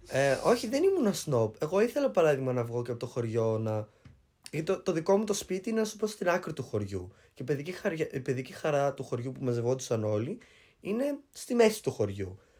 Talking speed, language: 225 wpm, Greek